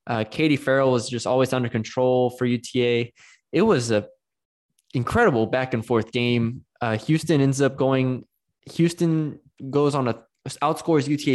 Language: English